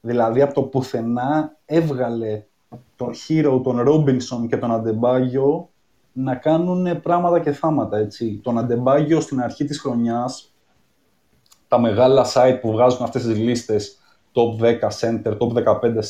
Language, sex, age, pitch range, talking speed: Greek, male, 20-39, 120-160 Hz, 140 wpm